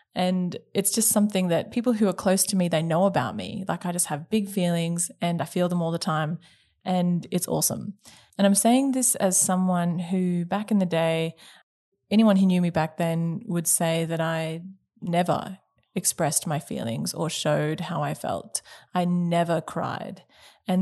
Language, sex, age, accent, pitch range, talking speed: English, female, 20-39, Australian, 170-195 Hz, 185 wpm